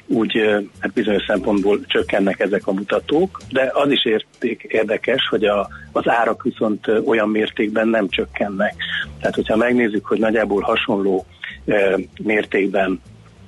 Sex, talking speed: male, 115 wpm